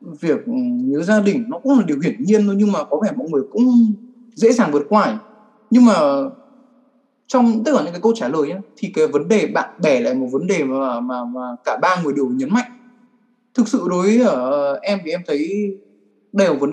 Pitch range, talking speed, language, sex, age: 180-245 Hz, 225 wpm, Vietnamese, male, 20-39